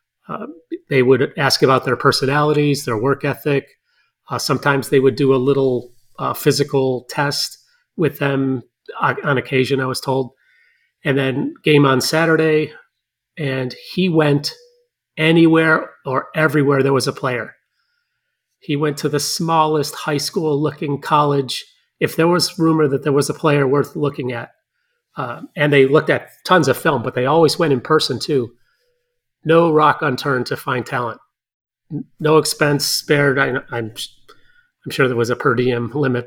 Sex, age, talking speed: male, 30-49, 160 wpm